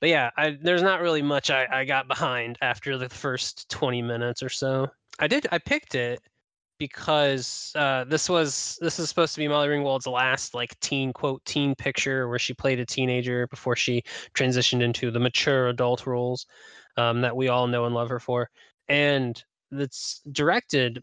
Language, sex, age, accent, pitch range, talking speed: English, male, 20-39, American, 120-140 Hz, 185 wpm